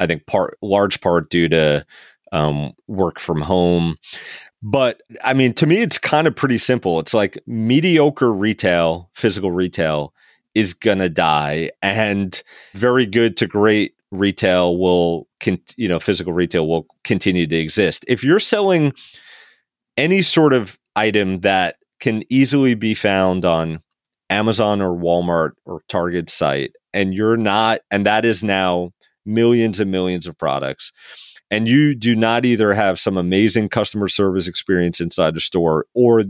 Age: 30-49